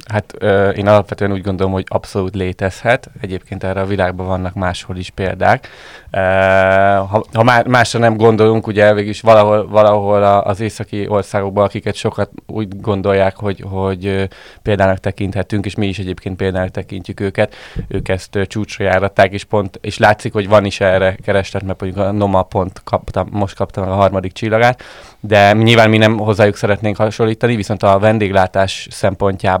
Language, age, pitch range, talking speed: Hungarian, 20-39, 95-105 Hz, 170 wpm